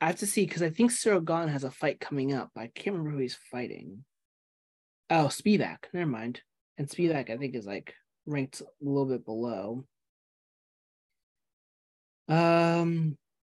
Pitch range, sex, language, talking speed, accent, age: 135-180 Hz, male, English, 155 wpm, American, 20-39